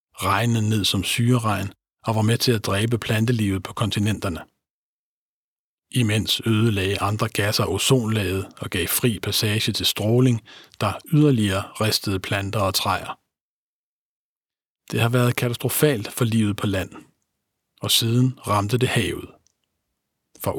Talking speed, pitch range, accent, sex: 130 wpm, 100-120 Hz, native, male